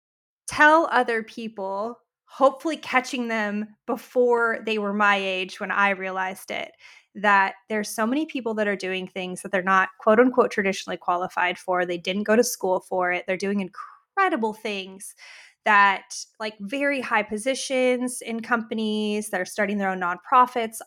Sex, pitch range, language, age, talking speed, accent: female, 200-245 Hz, English, 20-39, 160 wpm, American